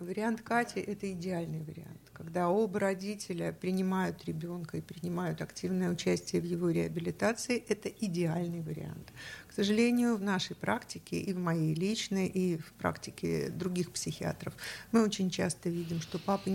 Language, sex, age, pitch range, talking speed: Russian, female, 50-69, 170-195 Hz, 150 wpm